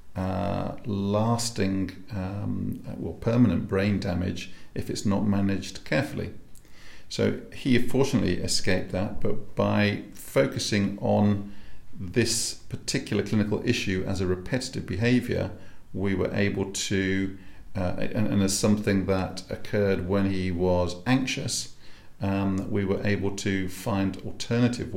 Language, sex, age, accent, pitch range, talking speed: English, male, 50-69, British, 95-110 Hz, 125 wpm